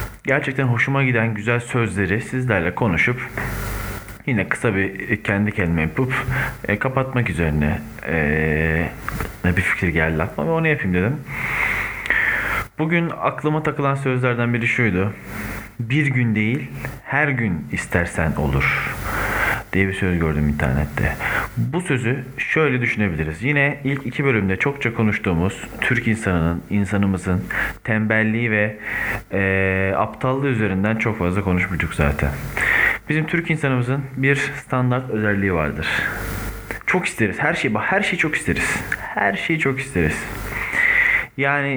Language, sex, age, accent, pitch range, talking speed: Turkish, male, 40-59, native, 100-135 Hz, 120 wpm